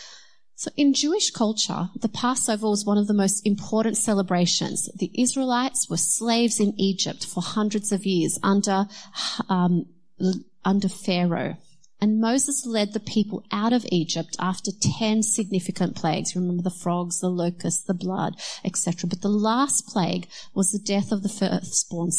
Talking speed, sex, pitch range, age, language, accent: 150 wpm, female, 180-225 Hz, 30-49, English, Australian